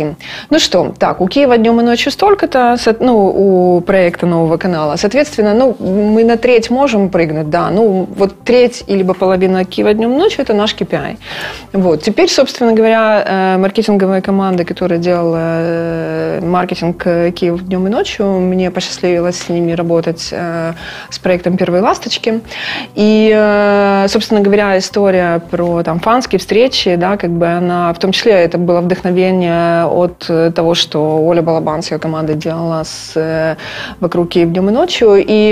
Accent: native